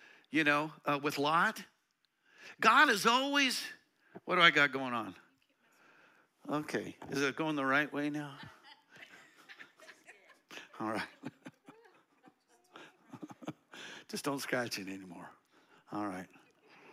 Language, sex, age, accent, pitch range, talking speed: English, male, 60-79, American, 170-255 Hz, 110 wpm